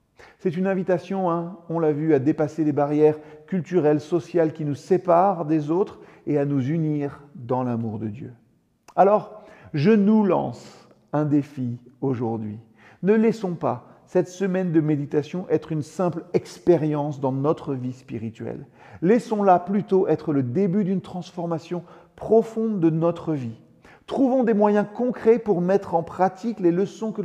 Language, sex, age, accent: French, male, 40-59, French